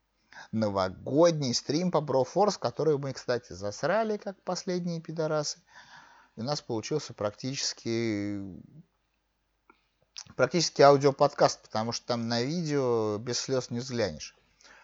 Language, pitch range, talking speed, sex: Russian, 115-175 Hz, 105 wpm, male